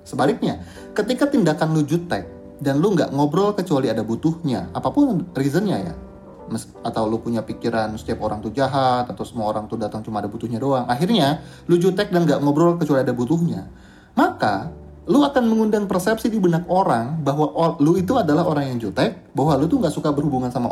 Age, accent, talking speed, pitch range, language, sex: 30-49, native, 180 wpm, 115-175 Hz, Indonesian, male